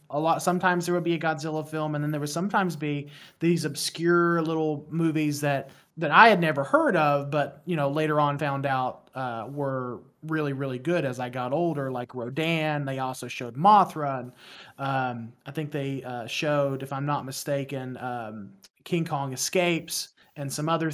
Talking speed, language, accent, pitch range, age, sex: 190 wpm, English, American, 135-175 Hz, 30-49, male